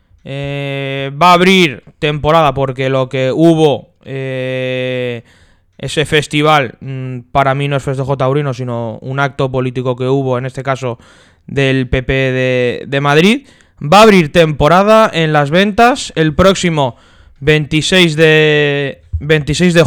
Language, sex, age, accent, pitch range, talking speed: Spanish, male, 20-39, Spanish, 135-180 Hz, 135 wpm